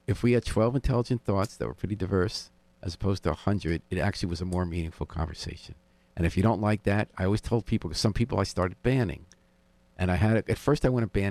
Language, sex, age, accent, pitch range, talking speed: English, male, 50-69, American, 80-105 Hz, 235 wpm